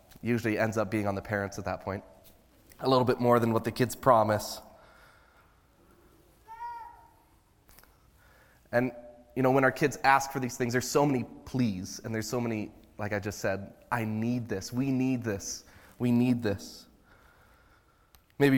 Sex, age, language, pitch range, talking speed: male, 20-39, English, 105-130 Hz, 165 wpm